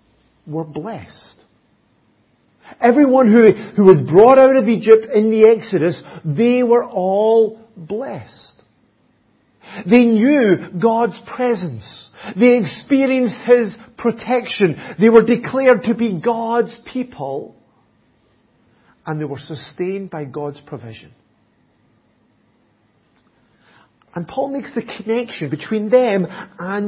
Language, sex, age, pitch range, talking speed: English, male, 50-69, 170-235 Hz, 105 wpm